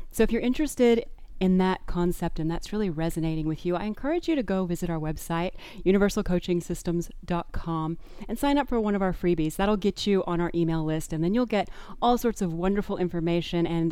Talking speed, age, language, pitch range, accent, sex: 205 wpm, 30-49, English, 165-195 Hz, American, female